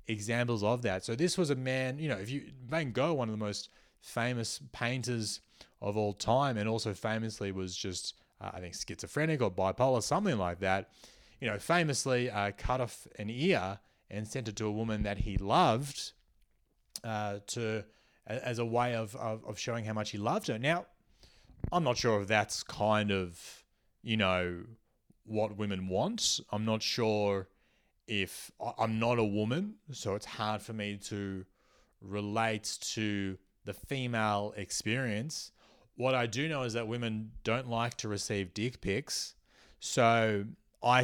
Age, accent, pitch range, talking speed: 30-49, Australian, 105-125 Hz, 170 wpm